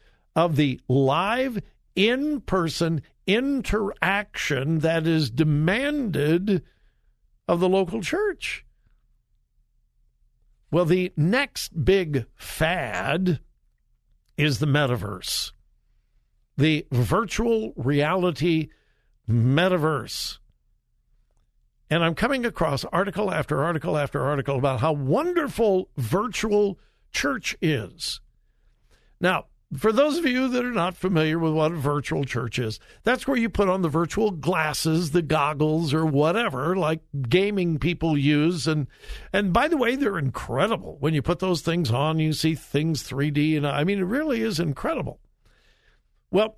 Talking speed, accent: 125 wpm, American